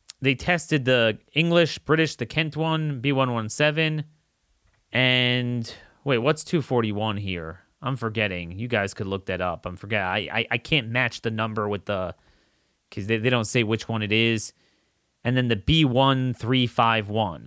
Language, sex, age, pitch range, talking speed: English, male, 30-49, 110-160 Hz, 160 wpm